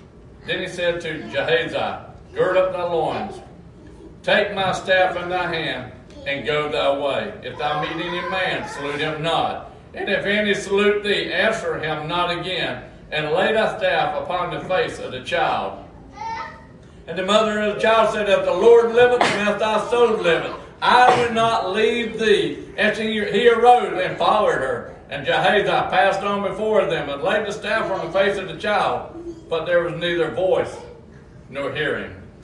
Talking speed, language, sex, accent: 180 wpm, English, male, American